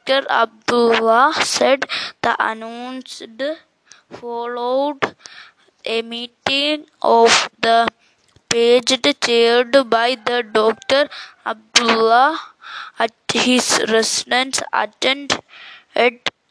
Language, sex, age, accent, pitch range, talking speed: English, female, 20-39, Indian, 235-275 Hz, 70 wpm